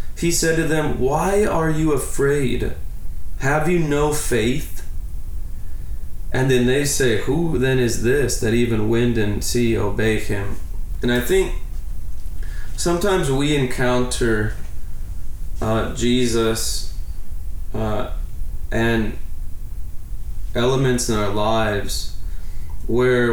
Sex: male